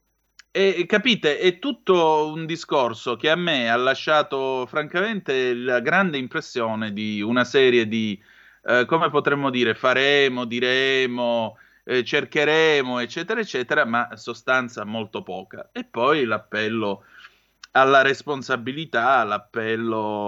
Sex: male